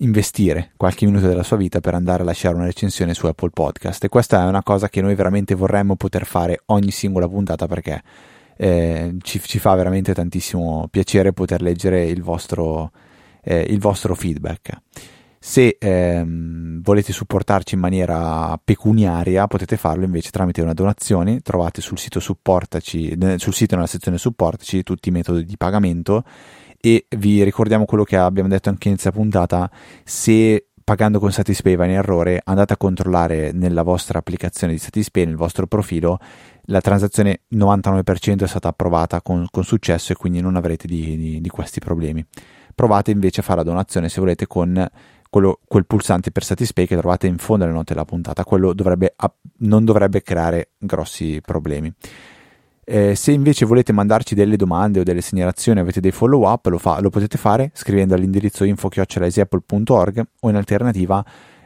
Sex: male